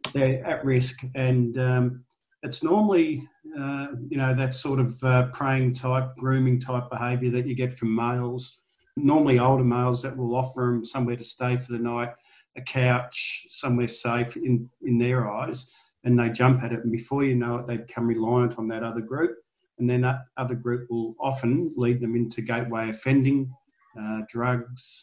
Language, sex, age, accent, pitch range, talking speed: English, male, 50-69, Australian, 120-130 Hz, 180 wpm